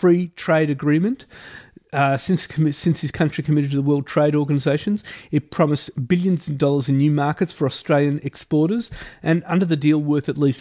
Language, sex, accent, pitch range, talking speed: English, male, Australian, 140-165 Hz, 180 wpm